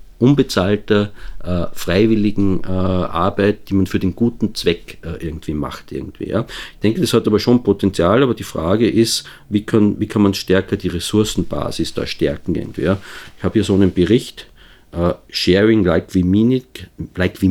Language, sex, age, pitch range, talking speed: German, male, 50-69, 90-110 Hz, 180 wpm